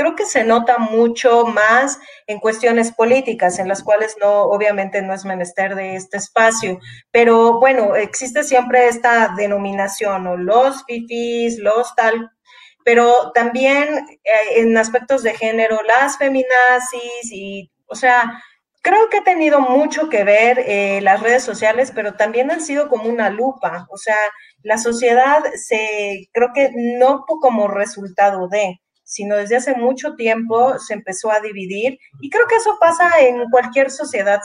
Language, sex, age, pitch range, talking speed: Spanish, female, 30-49, 205-260 Hz, 155 wpm